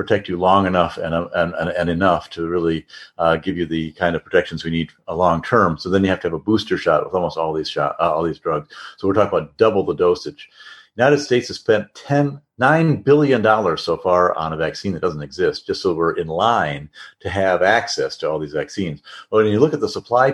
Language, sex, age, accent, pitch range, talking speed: English, male, 50-69, American, 85-110 Hz, 240 wpm